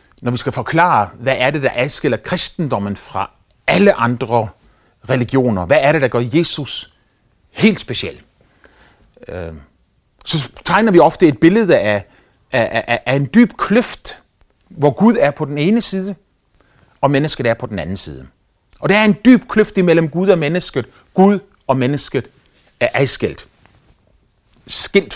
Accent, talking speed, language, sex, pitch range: native, 155 wpm, Danish, male, 120-195 Hz